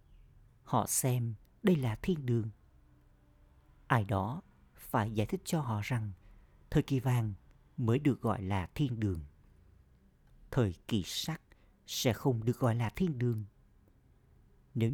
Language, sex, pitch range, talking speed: Vietnamese, male, 100-130 Hz, 135 wpm